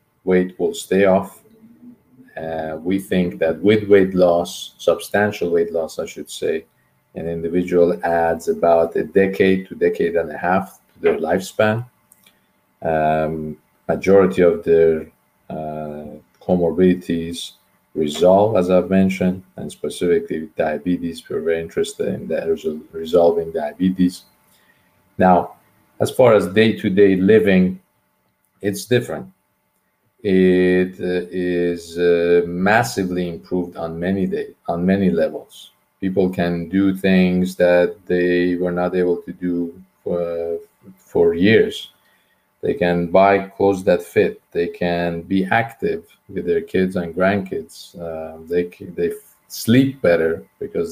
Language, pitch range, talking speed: English, 85-95 Hz, 125 wpm